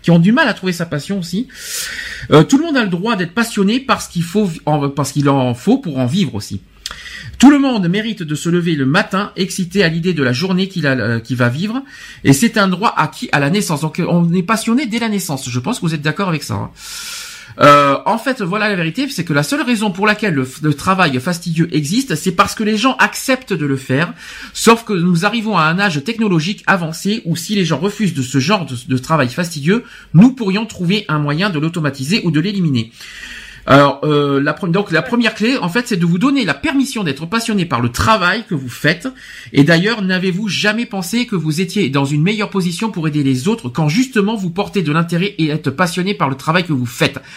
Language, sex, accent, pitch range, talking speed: French, male, French, 150-210 Hz, 235 wpm